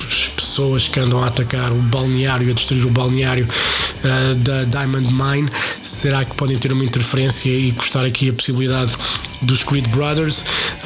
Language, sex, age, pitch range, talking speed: Portuguese, male, 20-39, 130-150 Hz, 155 wpm